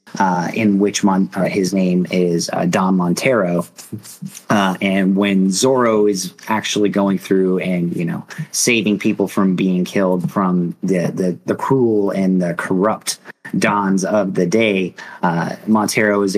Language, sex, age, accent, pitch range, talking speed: English, male, 30-49, American, 90-105 Hz, 145 wpm